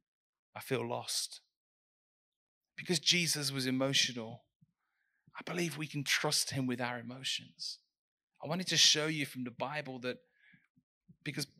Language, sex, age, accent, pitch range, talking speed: English, male, 30-49, British, 125-155 Hz, 135 wpm